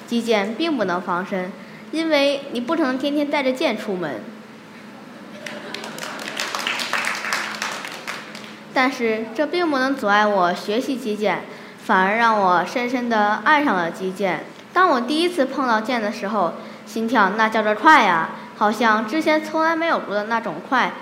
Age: 20-39